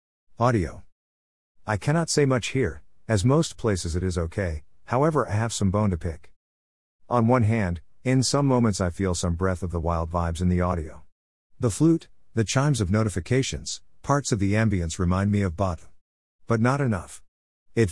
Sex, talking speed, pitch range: male, 180 wpm, 85-115 Hz